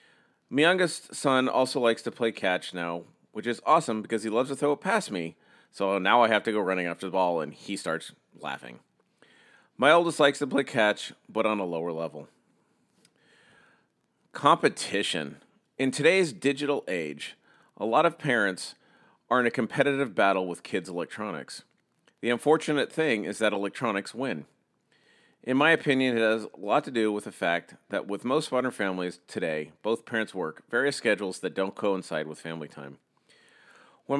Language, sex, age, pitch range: English, male, 40-59, 95-135 Hz